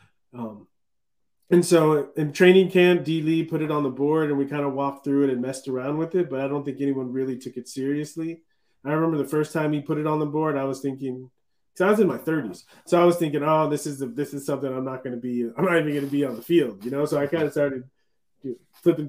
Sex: male